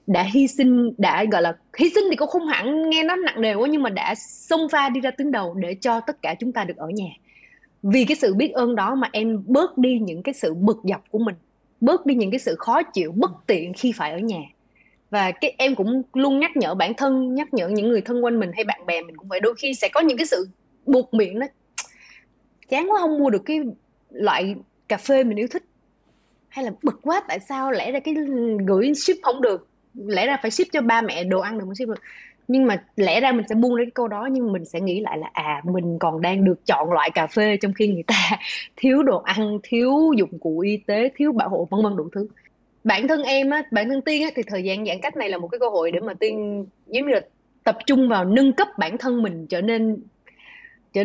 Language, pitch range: Vietnamese, 205-275 Hz